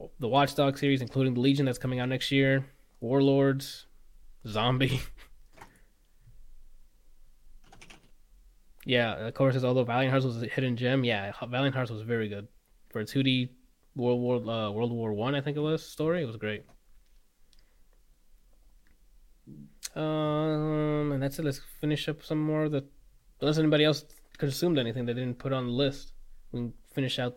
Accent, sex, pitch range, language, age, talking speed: American, male, 120-150 Hz, English, 20-39, 165 wpm